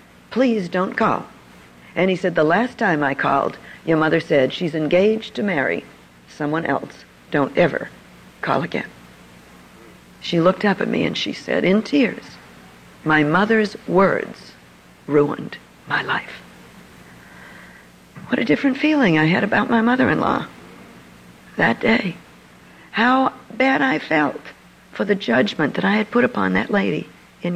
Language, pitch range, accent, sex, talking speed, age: English, 135-220 Hz, American, female, 145 wpm, 60-79